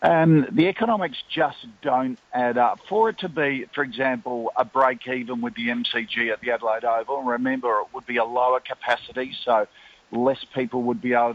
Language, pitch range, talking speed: English, 115-145 Hz, 190 wpm